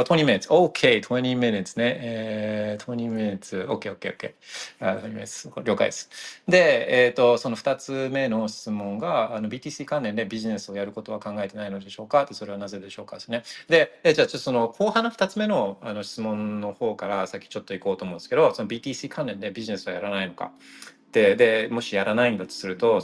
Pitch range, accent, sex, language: 105-145 Hz, native, male, Japanese